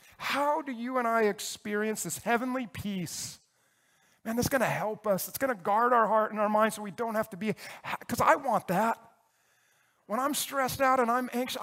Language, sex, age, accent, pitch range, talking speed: English, male, 40-59, American, 185-250 Hz, 210 wpm